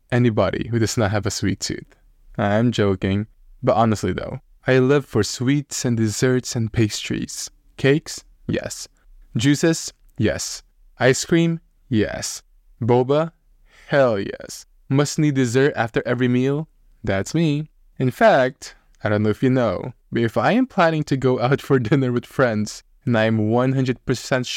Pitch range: 105-140 Hz